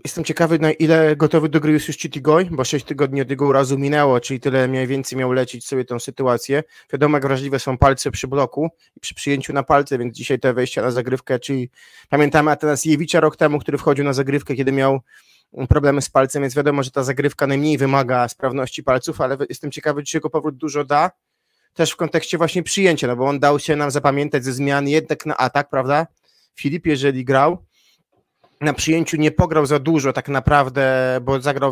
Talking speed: 205 wpm